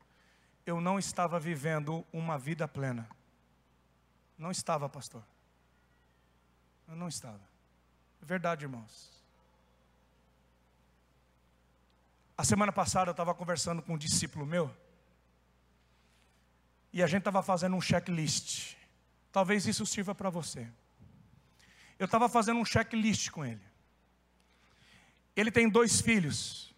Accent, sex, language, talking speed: Brazilian, male, Portuguese, 110 wpm